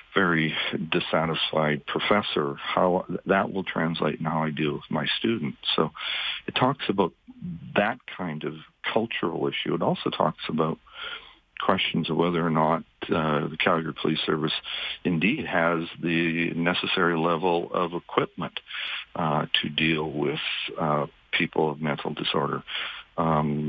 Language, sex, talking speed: English, male, 135 wpm